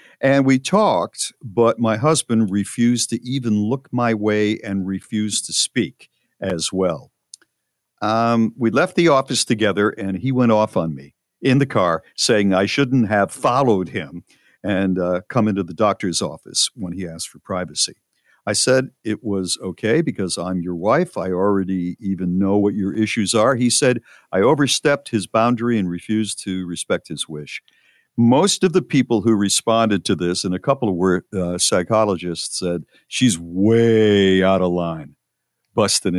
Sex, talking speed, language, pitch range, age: male, 165 wpm, English, 90-120 Hz, 50-69